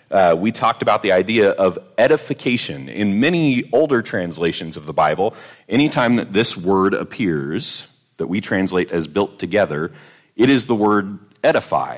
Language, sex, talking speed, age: English, male, 155 wpm, 30-49